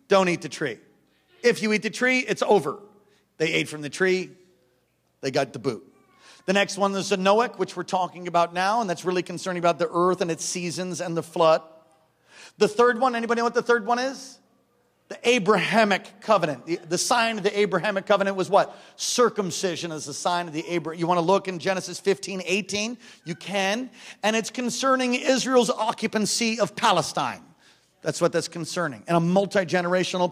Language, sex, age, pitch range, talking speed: English, male, 40-59, 170-215 Hz, 190 wpm